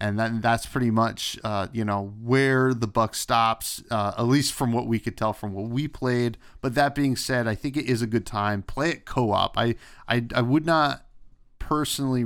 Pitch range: 105-125 Hz